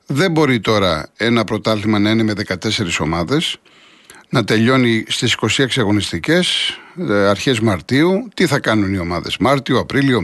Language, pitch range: Greek, 105-150 Hz